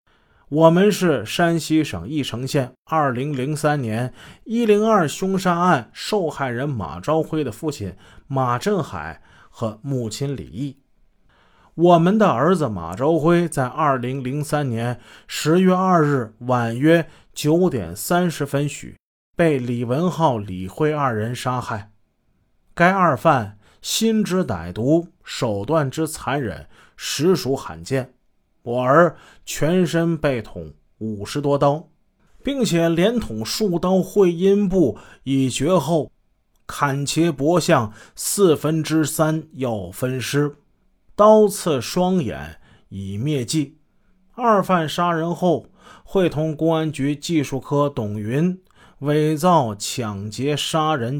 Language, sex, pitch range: Chinese, male, 125-170 Hz